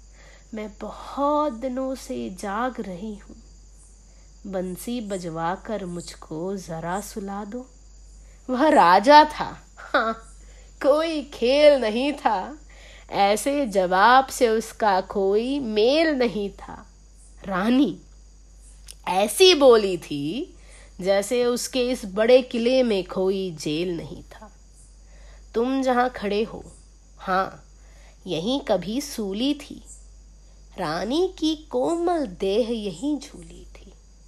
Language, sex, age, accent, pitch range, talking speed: Hindi, female, 30-49, native, 200-265 Hz, 105 wpm